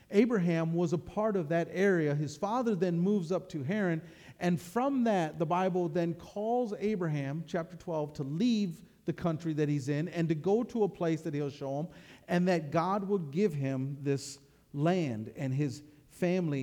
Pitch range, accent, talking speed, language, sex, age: 150-195 Hz, American, 190 wpm, English, male, 40-59